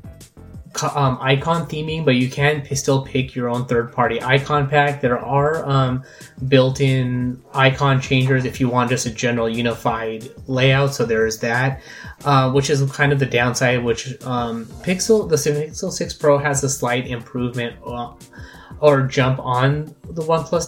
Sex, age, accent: male, 20-39, American